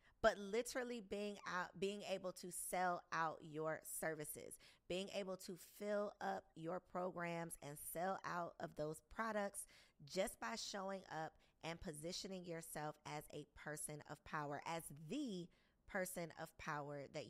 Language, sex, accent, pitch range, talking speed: English, female, American, 150-195 Hz, 145 wpm